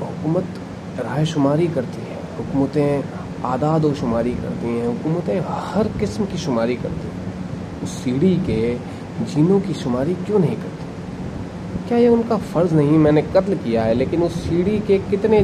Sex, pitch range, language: male, 125-170 Hz, Hindi